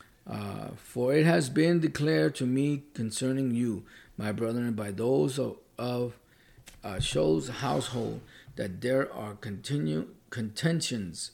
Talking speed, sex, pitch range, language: 125 wpm, male, 115-140 Hz, English